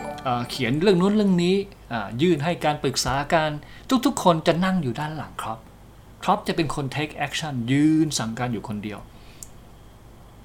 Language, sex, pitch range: Thai, male, 115-165 Hz